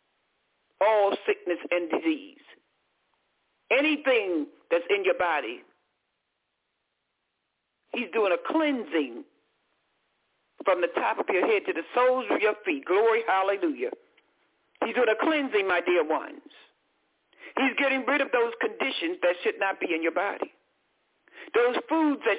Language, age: English, 60-79